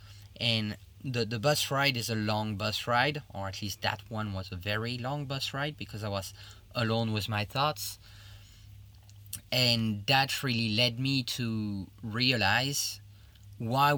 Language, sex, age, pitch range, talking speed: English, male, 30-49, 100-115 Hz, 155 wpm